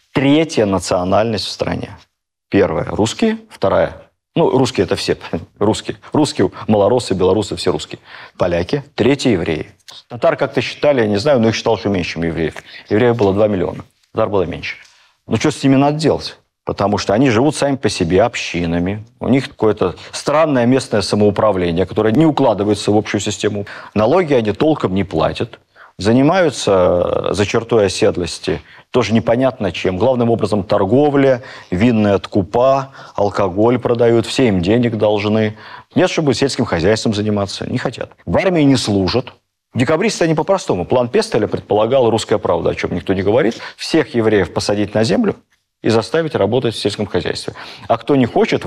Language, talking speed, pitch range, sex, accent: Russian, 160 wpm, 105-135 Hz, male, native